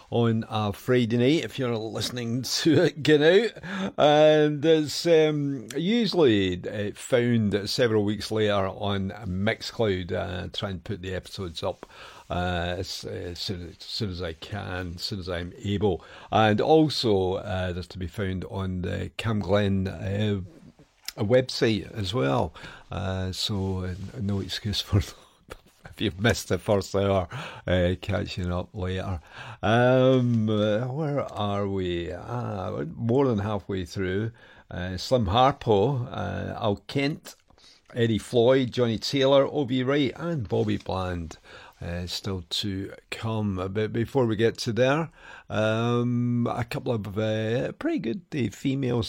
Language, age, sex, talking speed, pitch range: English, 50-69, male, 145 wpm, 95-125 Hz